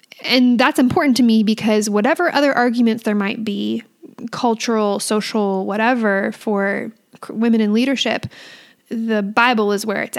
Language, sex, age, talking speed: English, female, 10-29, 140 wpm